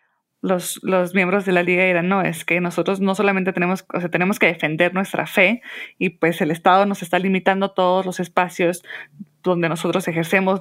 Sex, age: female, 20-39